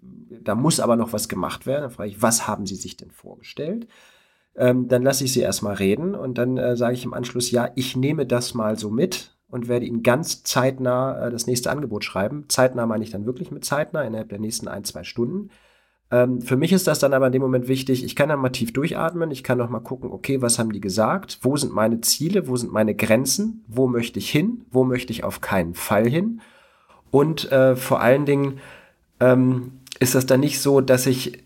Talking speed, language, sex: 225 wpm, German, male